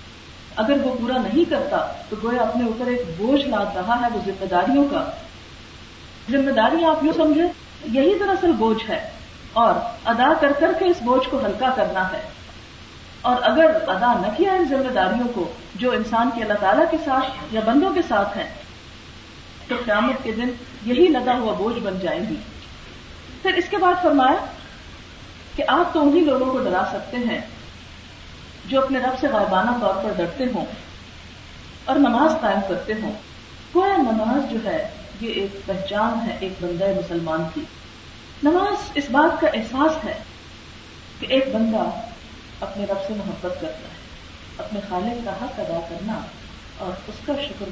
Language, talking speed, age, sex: Urdu, 170 wpm, 40-59, female